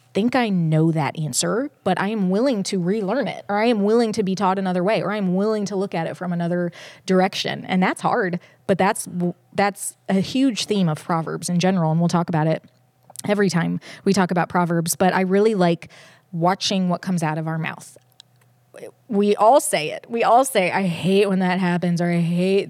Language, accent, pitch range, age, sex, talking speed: English, American, 175-220 Hz, 20-39, female, 215 wpm